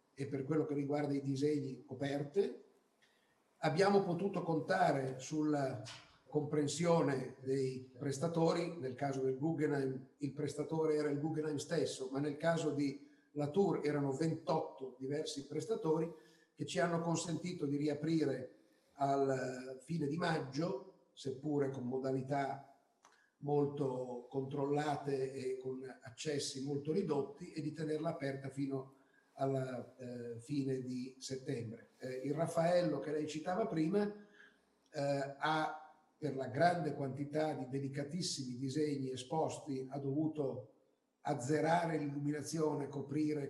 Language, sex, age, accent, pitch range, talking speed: Italian, male, 50-69, native, 135-155 Hz, 120 wpm